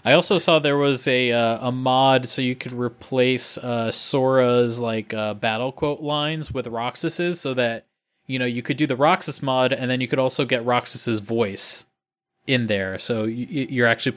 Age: 20-39